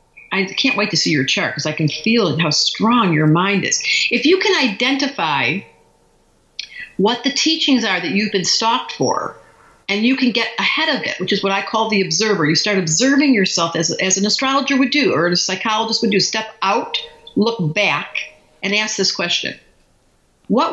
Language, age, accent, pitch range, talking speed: English, 50-69, American, 180-235 Hz, 195 wpm